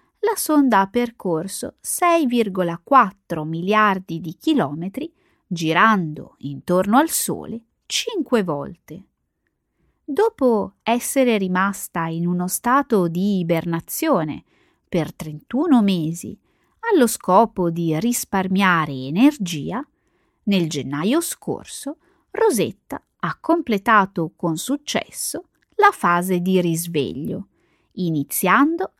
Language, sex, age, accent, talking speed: Italian, female, 20-39, native, 90 wpm